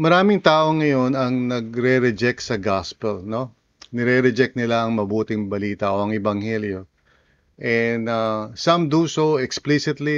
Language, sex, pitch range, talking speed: English, male, 110-130 Hz, 130 wpm